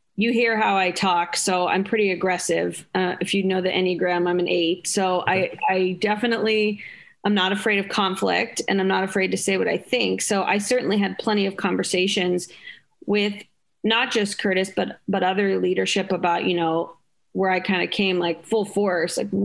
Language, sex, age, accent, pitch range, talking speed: English, female, 30-49, American, 185-215 Hz, 195 wpm